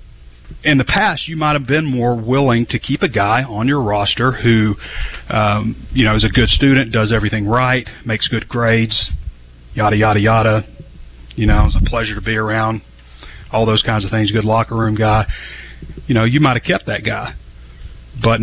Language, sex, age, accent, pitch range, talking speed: English, male, 40-59, American, 105-125 Hz, 190 wpm